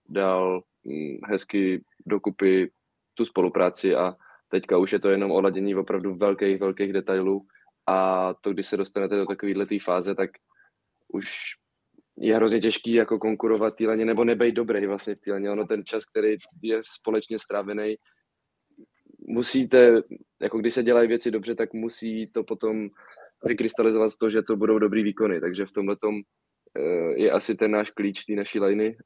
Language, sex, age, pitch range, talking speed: Czech, male, 20-39, 95-110 Hz, 155 wpm